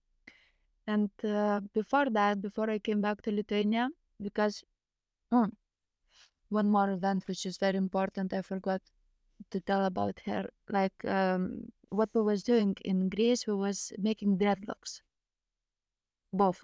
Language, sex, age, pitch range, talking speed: English, female, 20-39, 195-220 Hz, 135 wpm